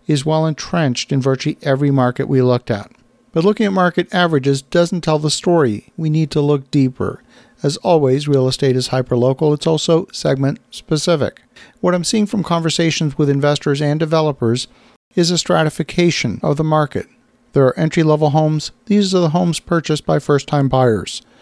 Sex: male